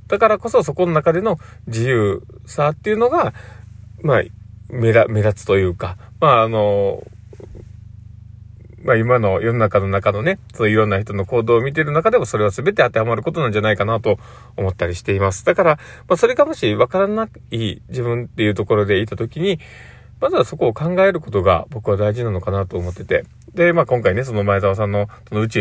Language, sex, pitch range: Japanese, male, 105-145 Hz